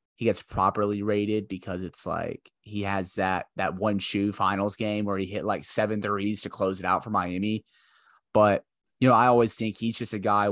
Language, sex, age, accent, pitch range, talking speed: English, male, 20-39, American, 90-110 Hz, 210 wpm